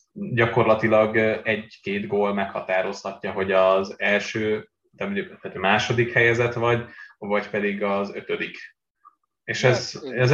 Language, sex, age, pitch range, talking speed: Hungarian, male, 20-39, 95-120 Hz, 105 wpm